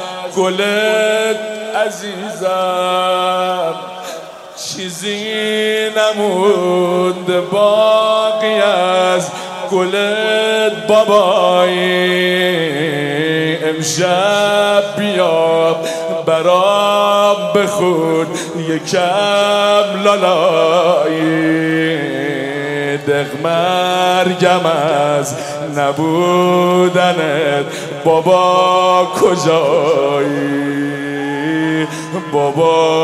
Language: Persian